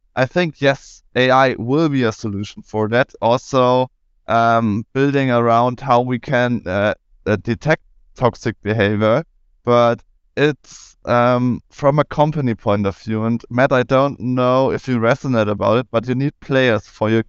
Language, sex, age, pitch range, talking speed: English, male, 20-39, 115-135 Hz, 165 wpm